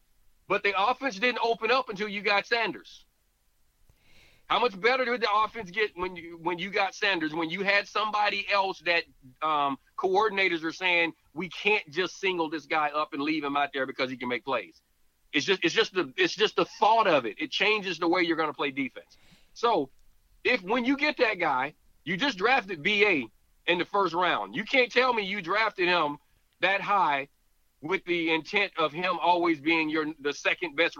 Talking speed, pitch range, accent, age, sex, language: 205 wpm, 155-210 Hz, American, 40-59, male, English